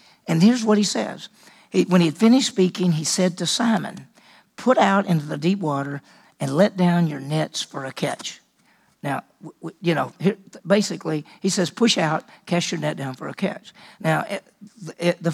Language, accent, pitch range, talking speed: English, American, 160-210 Hz, 170 wpm